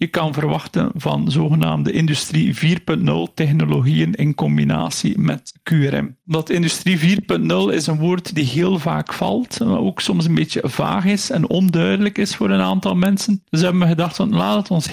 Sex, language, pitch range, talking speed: male, Dutch, 145-195 Hz, 175 wpm